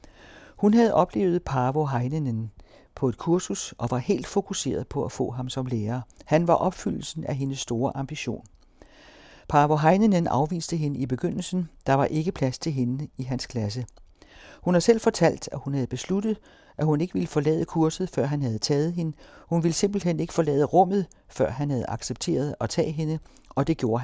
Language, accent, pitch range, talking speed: Danish, native, 125-175 Hz, 185 wpm